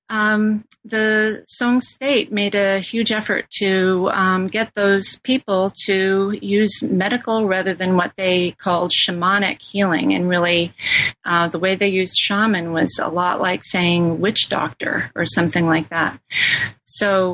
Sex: female